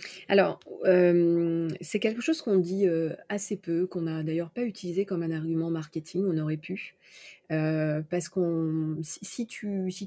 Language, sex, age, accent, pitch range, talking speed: French, female, 30-49, French, 160-195 Hz, 165 wpm